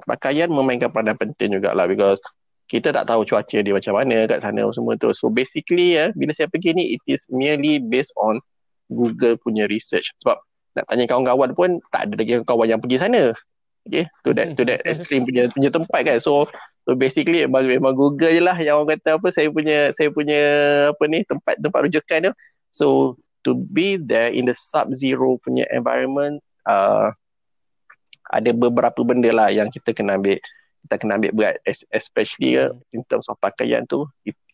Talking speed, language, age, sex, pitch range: 190 wpm, Malay, 20-39, male, 115-145 Hz